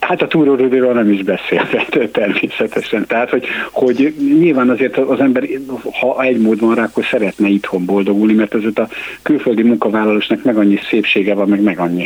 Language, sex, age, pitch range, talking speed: Hungarian, male, 60-79, 100-120 Hz, 175 wpm